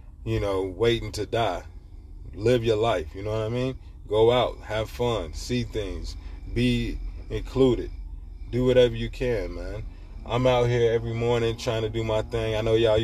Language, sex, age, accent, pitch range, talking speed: English, male, 20-39, American, 90-120 Hz, 180 wpm